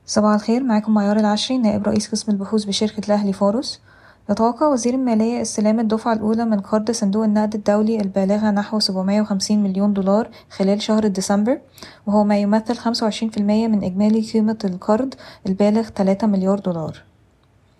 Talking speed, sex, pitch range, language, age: 145 wpm, female, 200-230 Hz, Arabic, 20-39